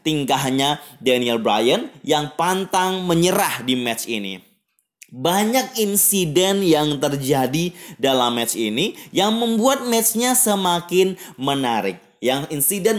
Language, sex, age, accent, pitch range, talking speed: Indonesian, male, 20-39, native, 125-190 Hz, 105 wpm